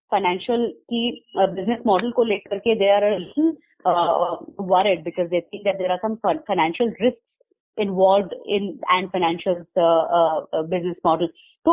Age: 20-39